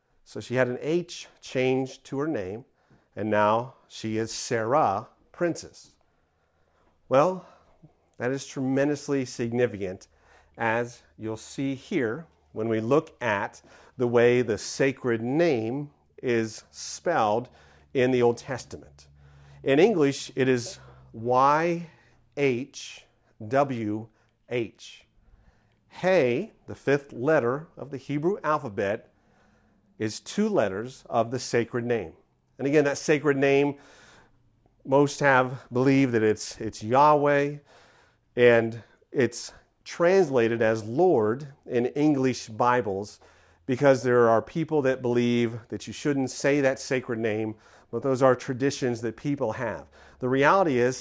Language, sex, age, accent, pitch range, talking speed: English, male, 50-69, American, 110-140 Hz, 120 wpm